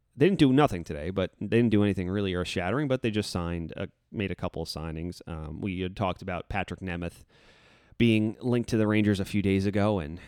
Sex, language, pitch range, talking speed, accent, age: male, English, 90-110 Hz, 230 wpm, American, 30-49